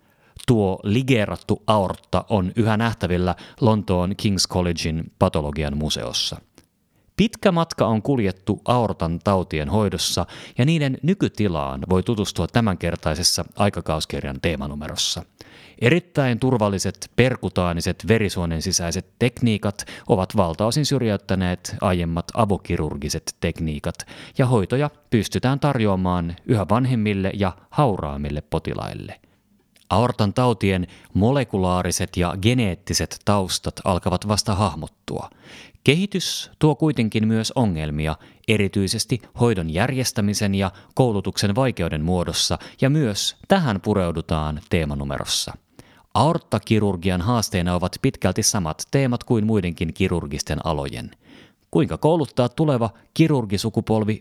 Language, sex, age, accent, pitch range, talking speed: Finnish, male, 30-49, native, 85-120 Hz, 95 wpm